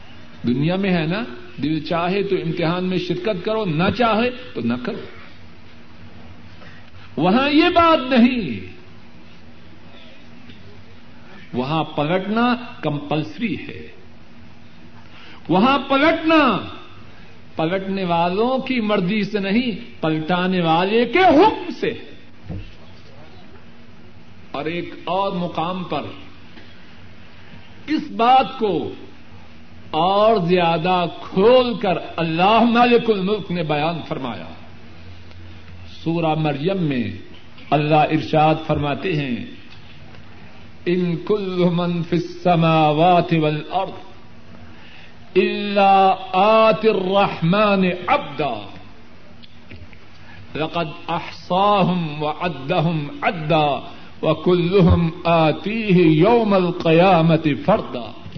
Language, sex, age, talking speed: Urdu, male, 60-79, 80 wpm